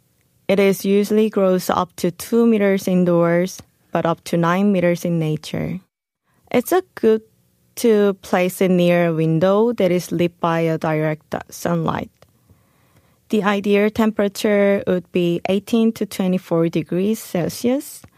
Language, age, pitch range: Korean, 20-39, 170-210 Hz